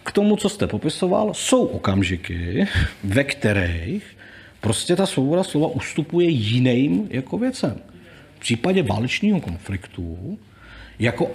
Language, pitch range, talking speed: Czech, 105-160 Hz, 115 wpm